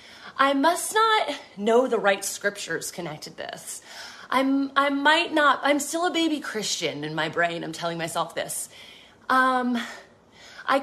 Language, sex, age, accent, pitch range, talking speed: English, female, 30-49, American, 210-305 Hz, 150 wpm